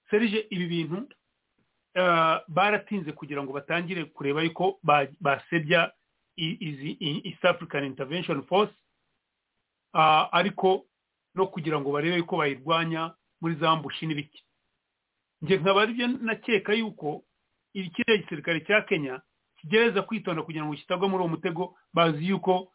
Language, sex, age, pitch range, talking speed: English, male, 40-59, 155-190 Hz, 120 wpm